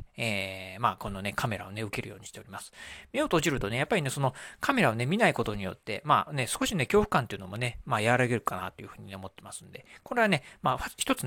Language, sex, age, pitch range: Japanese, male, 40-59, 110-165 Hz